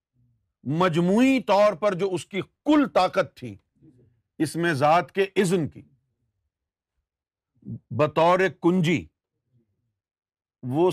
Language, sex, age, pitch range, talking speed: Urdu, male, 50-69, 110-185 Hz, 100 wpm